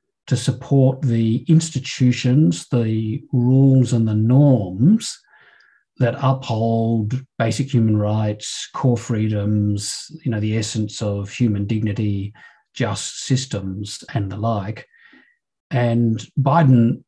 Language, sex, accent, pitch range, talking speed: English, male, Australian, 105-130 Hz, 105 wpm